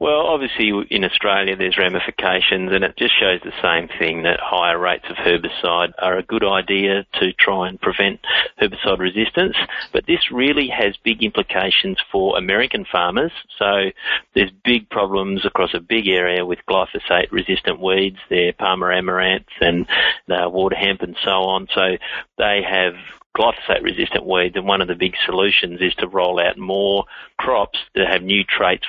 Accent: Australian